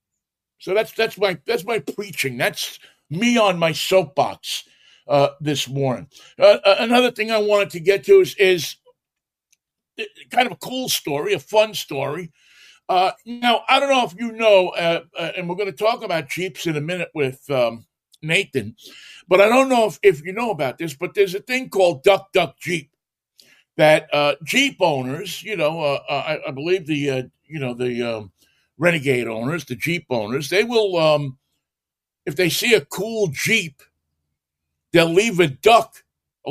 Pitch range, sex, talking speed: 145-215 Hz, male, 180 wpm